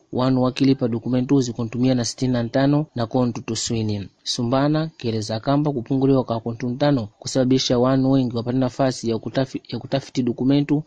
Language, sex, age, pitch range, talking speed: Portuguese, male, 30-49, 120-135 Hz, 145 wpm